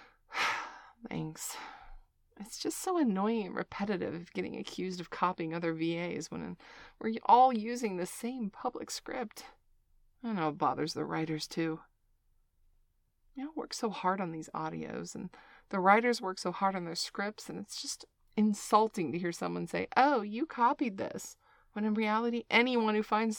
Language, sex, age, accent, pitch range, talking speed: English, female, 30-49, American, 165-235 Hz, 165 wpm